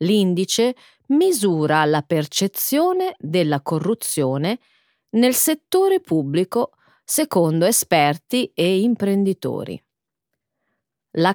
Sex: female